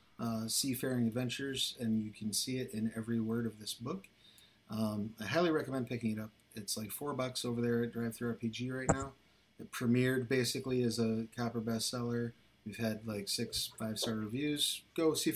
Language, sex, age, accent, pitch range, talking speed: English, male, 40-59, American, 110-125 Hz, 180 wpm